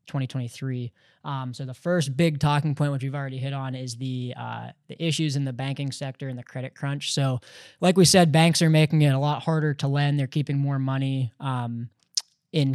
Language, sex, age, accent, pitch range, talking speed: English, male, 20-39, American, 130-150 Hz, 210 wpm